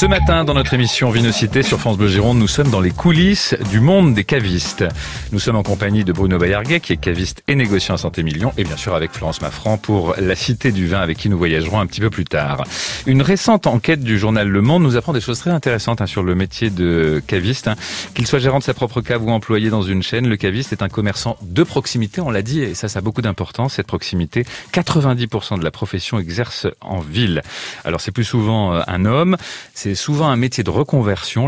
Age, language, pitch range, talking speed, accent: 40-59, French, 95-125 Hz, 235 wpm, French